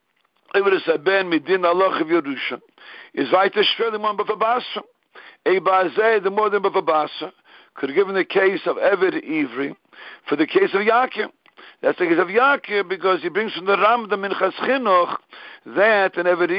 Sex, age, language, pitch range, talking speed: male, 60-79, English, 180-265 Hz, 150 wpm